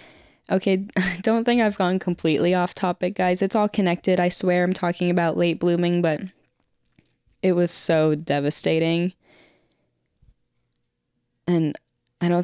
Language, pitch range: English, 160-185 Hz